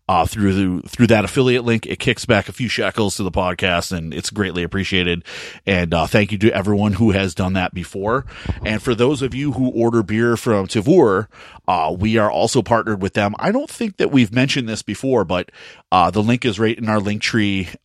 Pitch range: 95-120 Hz